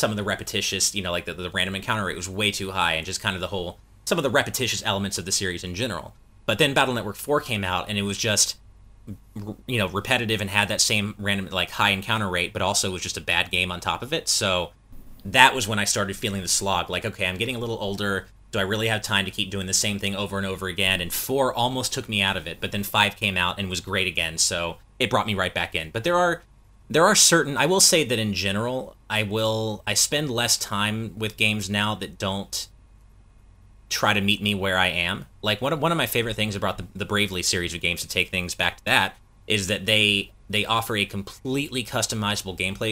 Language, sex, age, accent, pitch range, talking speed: English, male, 30-49, American, 95-110 Hz, 255 wpm